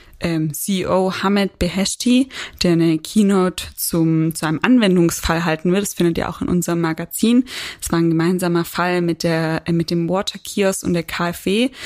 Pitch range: 170-195 Hz